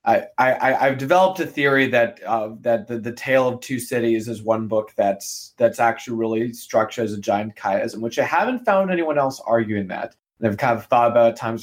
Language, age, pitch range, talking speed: English, 20-39, 110-130 Hz, 225 wpm